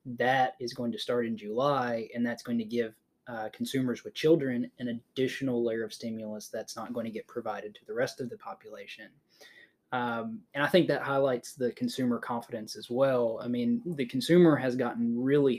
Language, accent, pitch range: English, American, 115-135 Hz